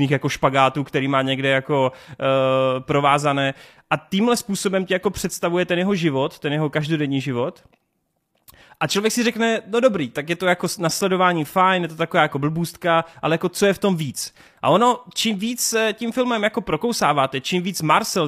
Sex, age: male, 30-49